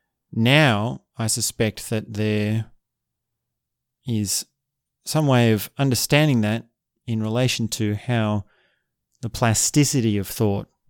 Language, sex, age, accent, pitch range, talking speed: English, male, 30-49, Australian, 110-130 Hz, 105 wpm